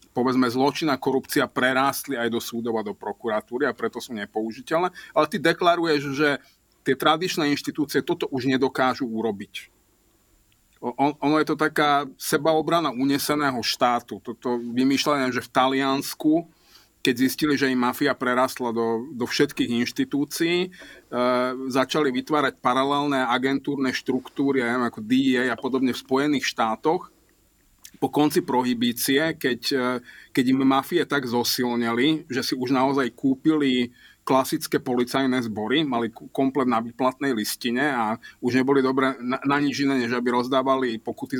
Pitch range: 125-140 Hz